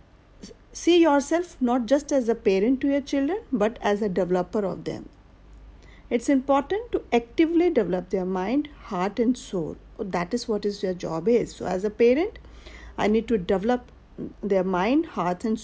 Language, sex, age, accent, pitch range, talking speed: English, female, 50-69, Indian, 195-280 Hz, 175 wpm